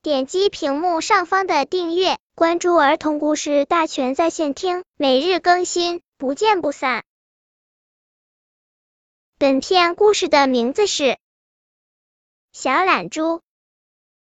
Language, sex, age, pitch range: Chinese, male, 10-29, 285-370 Hz